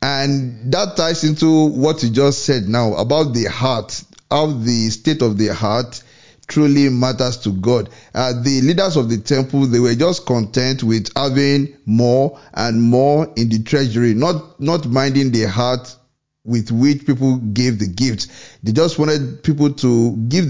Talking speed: 165 wpm